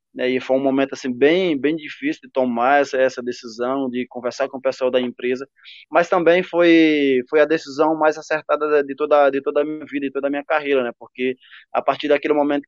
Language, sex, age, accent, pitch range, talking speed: Portuguese, male, 20-39, Brazilian, 135-155 Hz, 220 wpm